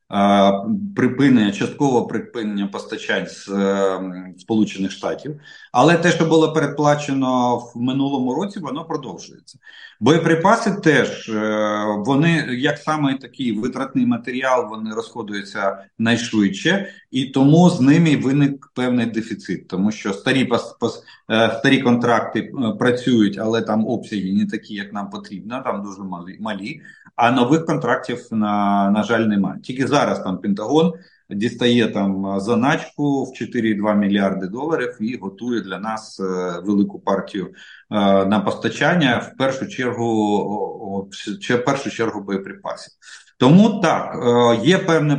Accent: native